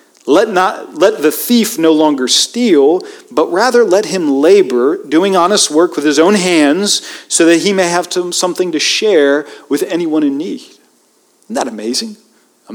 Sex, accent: male, American